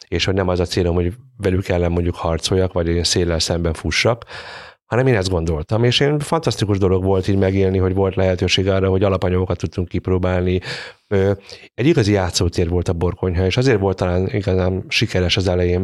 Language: Hungarian